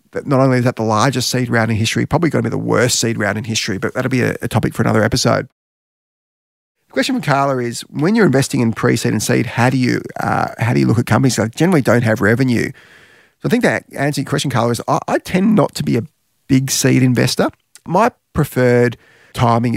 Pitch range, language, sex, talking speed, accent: 115-145 Hz, English, male, 240 wpm, Australian